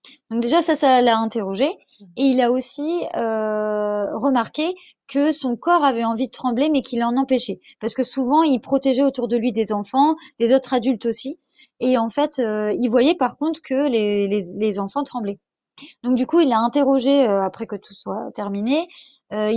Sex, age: female, 20-39